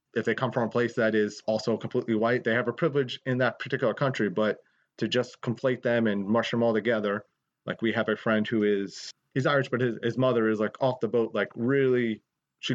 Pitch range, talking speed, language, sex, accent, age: 110-125 Hz, 235 wpm, English, male, American, 30-49